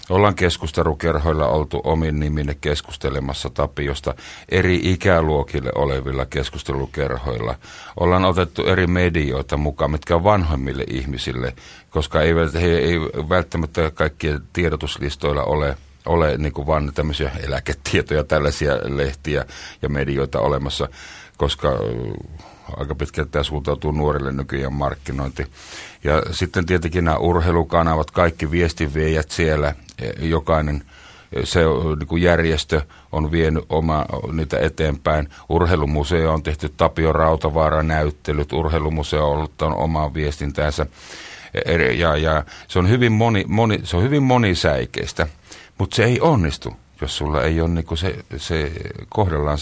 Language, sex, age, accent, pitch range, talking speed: Finnish, male, 50-69, native, 75-85 Hz, 110 wpm